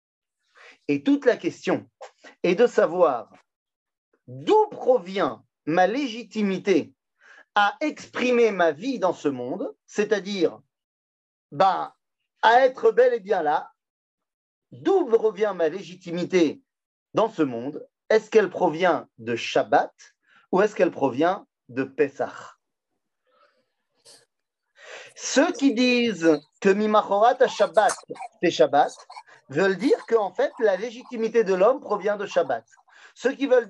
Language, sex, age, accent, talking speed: French, male, 40-59, French, 120 wpm